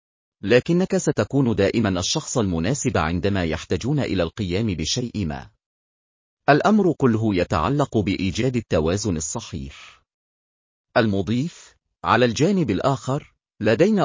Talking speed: 95 wpm